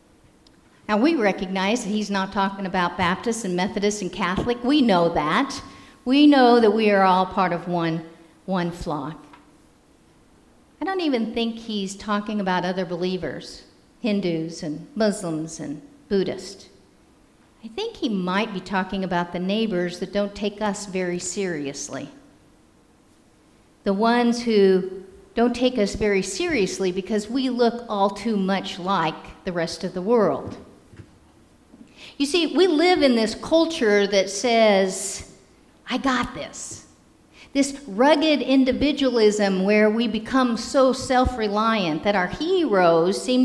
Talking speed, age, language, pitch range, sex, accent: 140 wpm, 50-69, English, 180-235 Hz, female, American